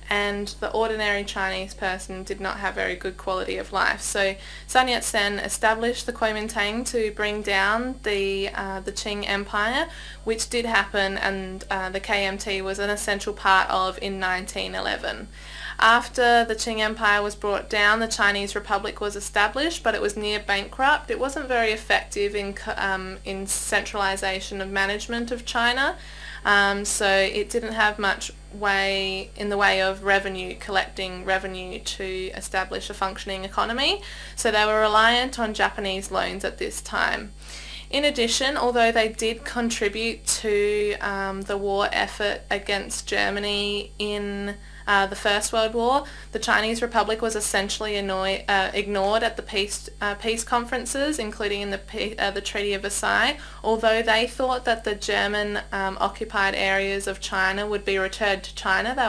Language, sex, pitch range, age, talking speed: English, female, 195-220 Hz, 20-39, 160 wpm